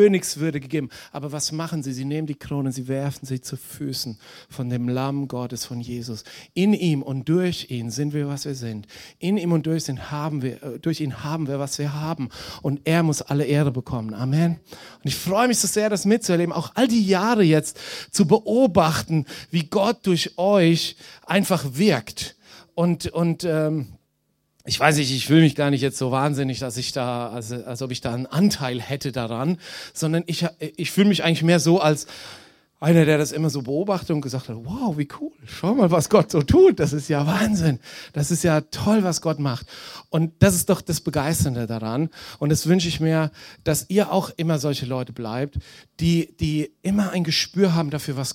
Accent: German